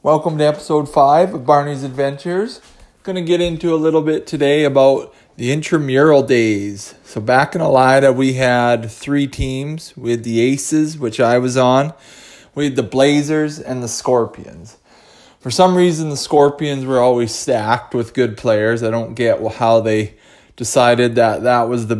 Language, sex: English, male